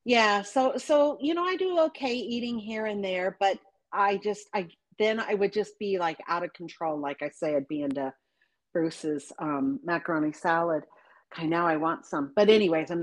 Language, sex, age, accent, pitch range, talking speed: English, female, 50-69, American, 170-235 Hz, 200 wpm